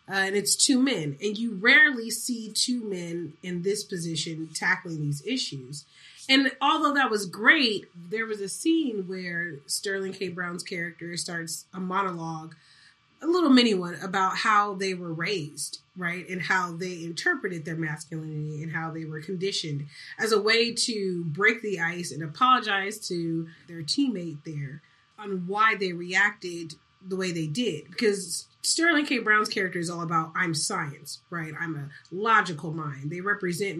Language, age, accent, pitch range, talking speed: English, 30-49, American, 165-210 Hz, 165 wpm